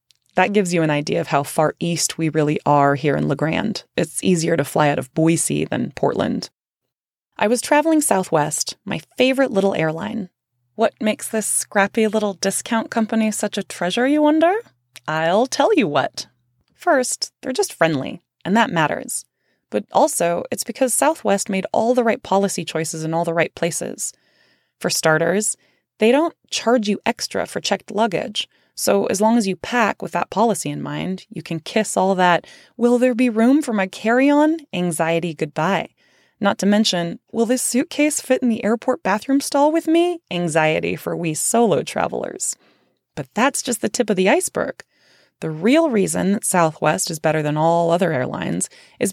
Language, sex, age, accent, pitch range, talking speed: English, female, 20-39, American, 165-235 Hz, 180 wpm